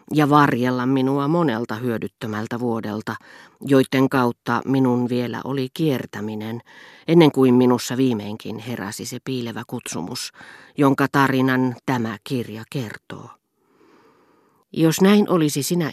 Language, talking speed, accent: Finnish, 110 wpm, native